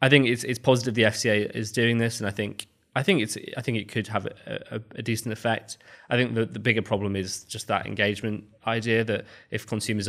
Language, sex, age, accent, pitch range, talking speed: English, male, 20-39, British, 95-110 Hz, 240 wpm